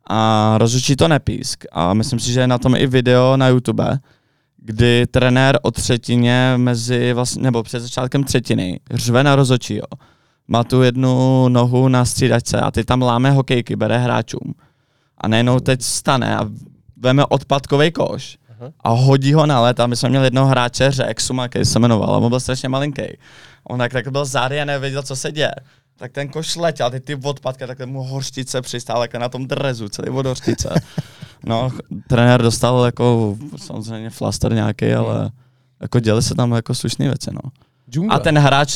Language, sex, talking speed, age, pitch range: Czech, male, 175 wpm, 20-39, 120-135 Hz